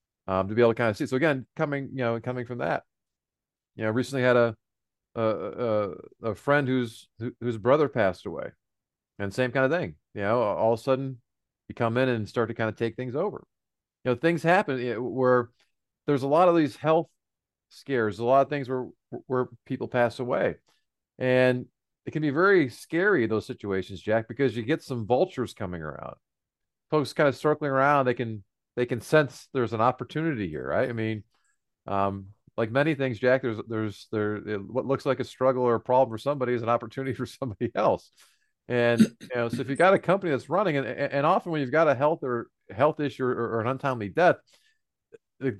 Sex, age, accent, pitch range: male, 40-59, American, 115-140 Hz